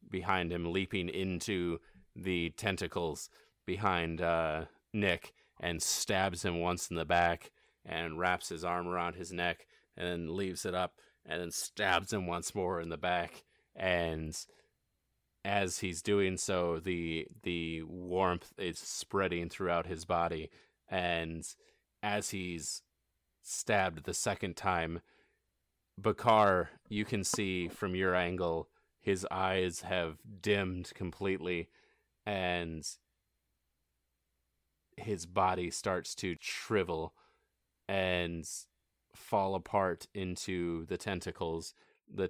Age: 30-49